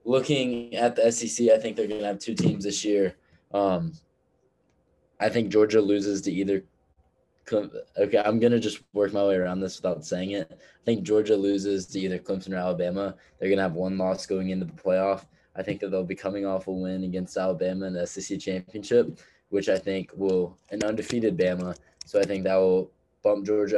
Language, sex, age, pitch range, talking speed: English, male, 10-29, 90-100 Hz, 205 wpm